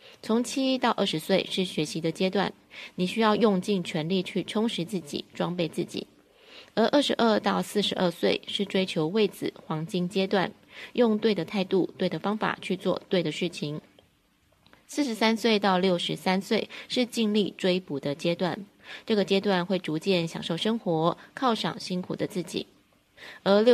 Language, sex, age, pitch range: Chinese, female, 20-39, 170-215 Hz